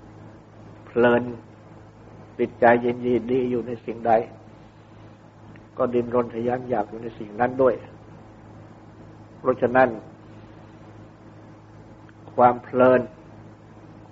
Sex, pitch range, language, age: male, 105-120 Hz, Thai, 60-79